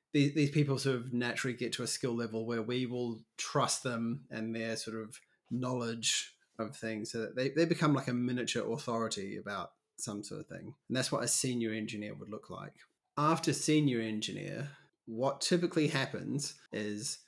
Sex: male